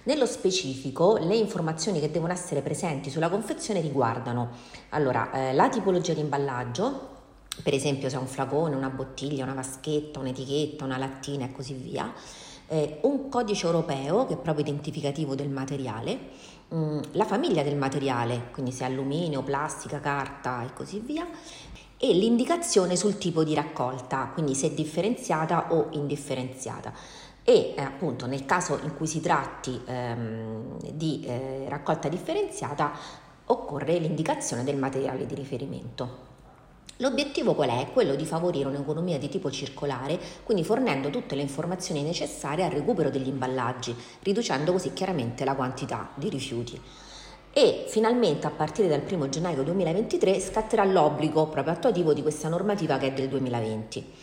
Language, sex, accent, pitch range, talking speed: Italian, female, native, 135-175 Hz, 145 wpm